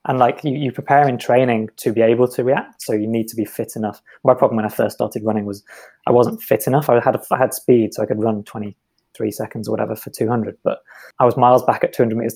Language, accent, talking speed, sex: English, British, 265 wpm, male